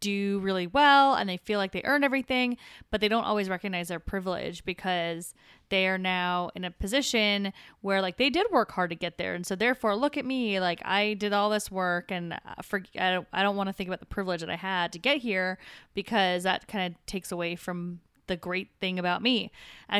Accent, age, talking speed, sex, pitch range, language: American, 20-39, 230 wpm, female, 175-205 Hz, English